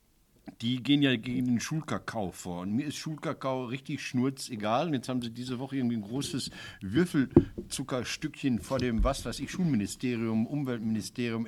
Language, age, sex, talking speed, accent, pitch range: German, 60-79, male, 155 wpm, German, 120-155 Hz